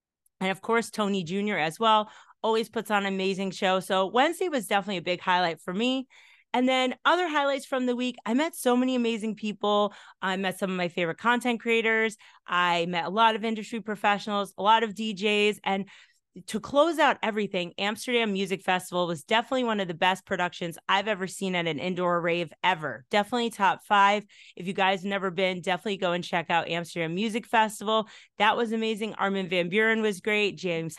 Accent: American